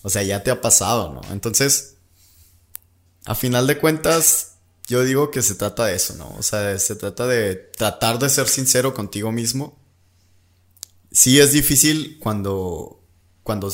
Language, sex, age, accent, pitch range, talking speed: Spanish, male, 20-39, Mexican, 90-115 Hz, 155 wpm